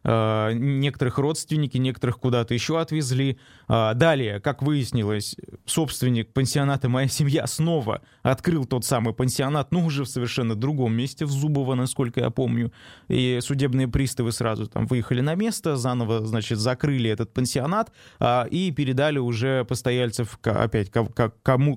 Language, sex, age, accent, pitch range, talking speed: Russian, male, 20-39, native, 120-145 Hz, 135 wpm